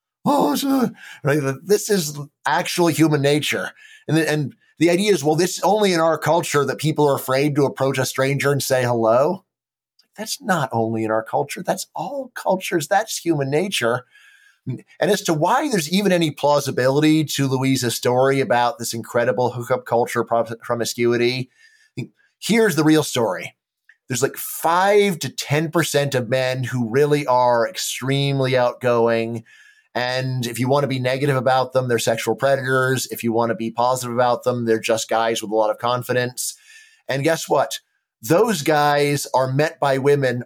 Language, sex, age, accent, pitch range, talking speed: English, male, 30-49, American, 130-170 Hz, 170 wpm